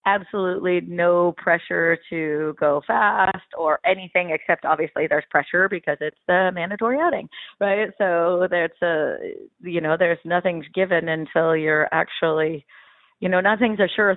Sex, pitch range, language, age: female, 155-175 Hz, English, 30-49